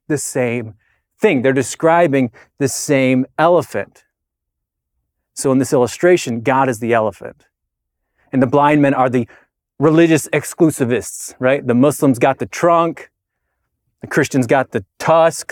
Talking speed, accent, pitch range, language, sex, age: 135 wpm, American, 105-140 Hz, English, male, 30-49